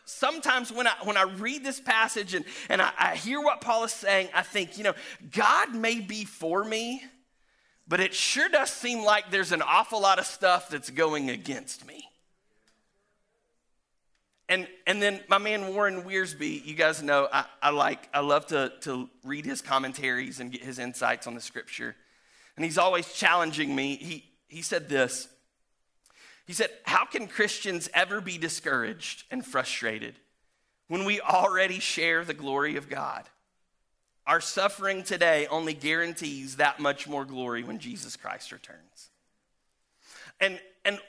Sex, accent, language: male, American, English